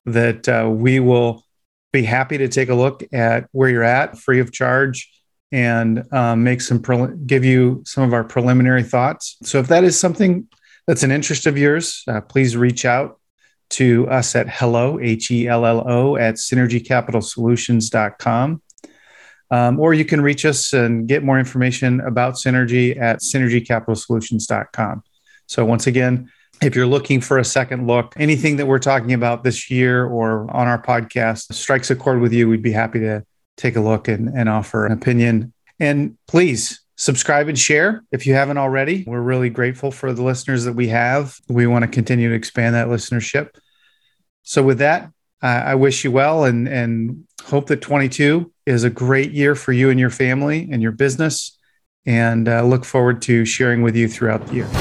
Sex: male